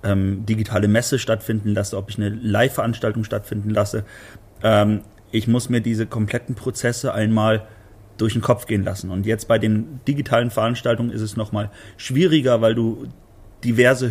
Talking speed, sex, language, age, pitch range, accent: 155 wpm, male, German, 30-49, 110-135 Hz, German